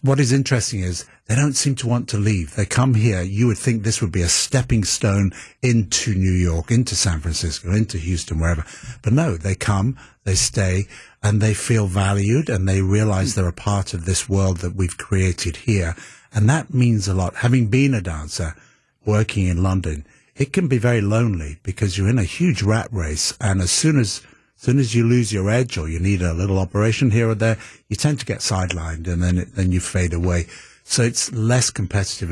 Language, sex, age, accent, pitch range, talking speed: English, male, 60-79, British, 90-115 Hz, 215 wpm